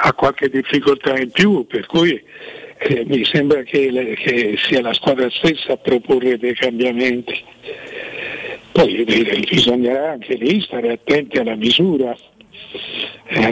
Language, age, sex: Italian, 60-79, male